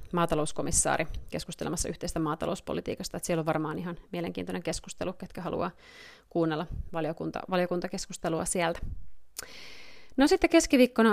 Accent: native